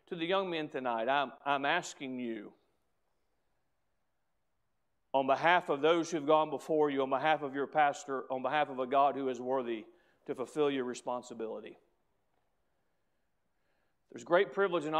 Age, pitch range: 40-59, 135-160 Hz